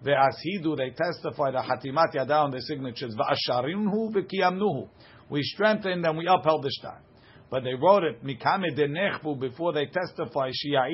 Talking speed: 115 wpm